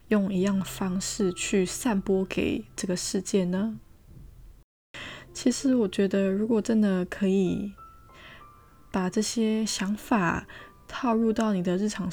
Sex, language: female, Chinese